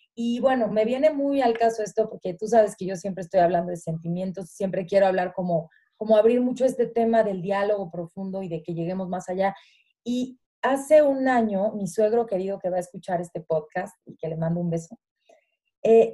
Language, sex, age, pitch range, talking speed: Spanish, female, 30-49, 195-245 Hz, 210 wpm